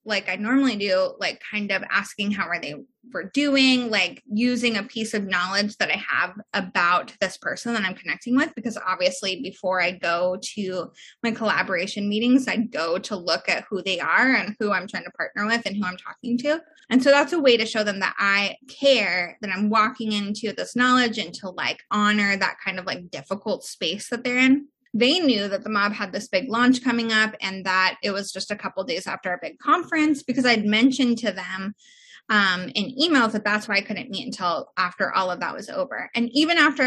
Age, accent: 20-39, American